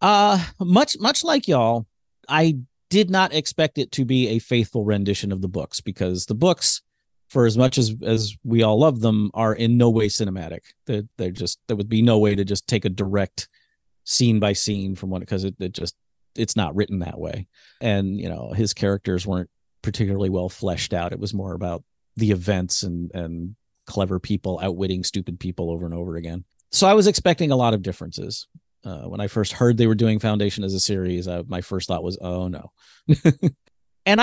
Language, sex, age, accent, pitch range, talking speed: English, male, 40-59, American, 95-130 Hz, 205 wpm